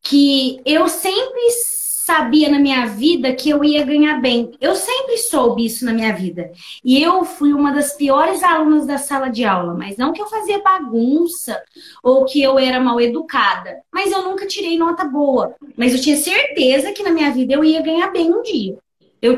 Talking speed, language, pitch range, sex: 195 wpm, Portuguese, 245-345 Hz, female